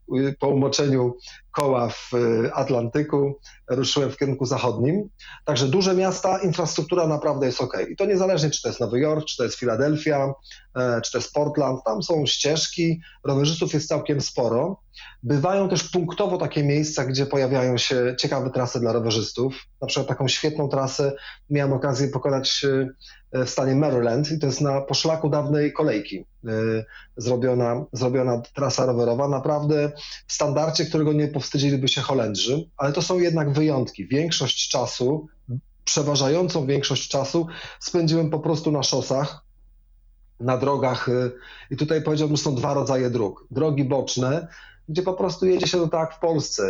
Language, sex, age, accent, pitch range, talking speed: Polish, male, 30-49, native, 130-155 Hz, 150 wpm